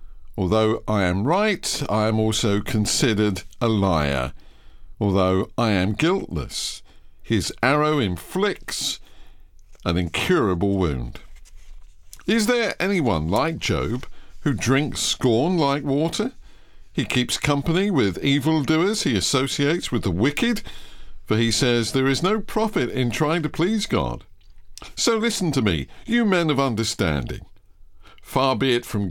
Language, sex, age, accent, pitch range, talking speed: English, male, 50-69, British, 100-155 Hz, 130 wpm